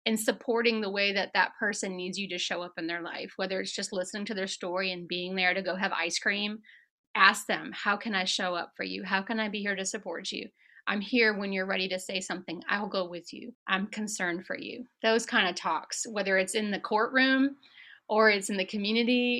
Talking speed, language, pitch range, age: 240 wpm, English, 190-230 Hz, 30-49